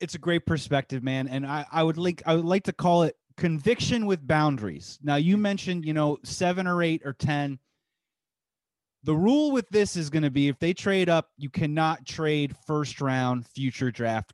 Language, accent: English, American